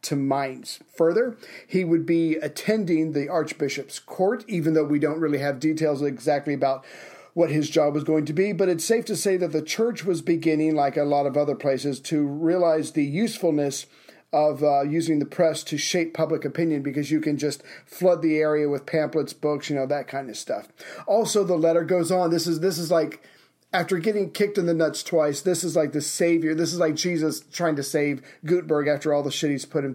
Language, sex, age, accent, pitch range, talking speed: English, male, 40-59, American, 150-170 Hz, 215 wpm